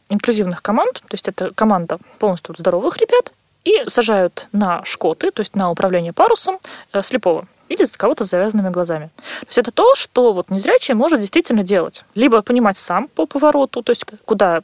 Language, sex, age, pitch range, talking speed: Russian, female, 20-39, 190-275 Hz, 175 wpm